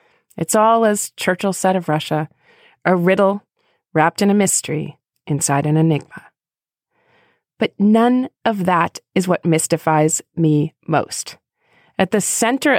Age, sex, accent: 30-49, female, American